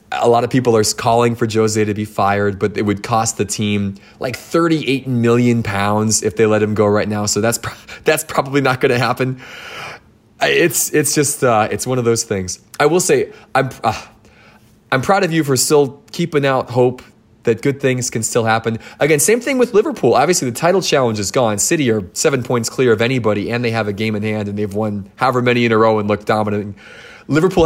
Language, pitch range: English, 105-130 Hz